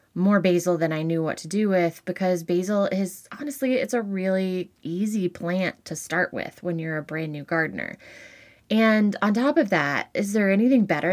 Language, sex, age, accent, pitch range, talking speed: English, female, 20-39, American, 160-200 Hz, 195 wpm